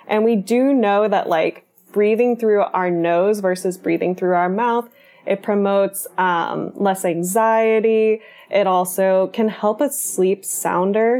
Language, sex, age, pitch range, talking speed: English, female, 10-29, 190-240 Hz, 145 wpm